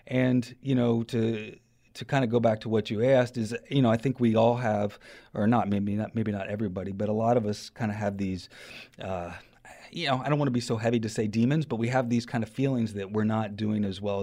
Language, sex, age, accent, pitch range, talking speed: English, male, 30-49, American, 100-115 Hz, 265 wpm